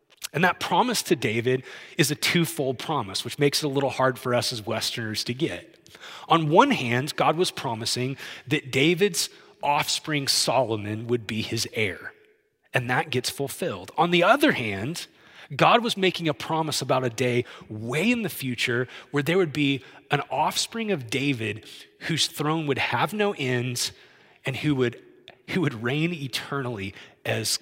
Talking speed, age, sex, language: 165 wpm, 30-49, male, English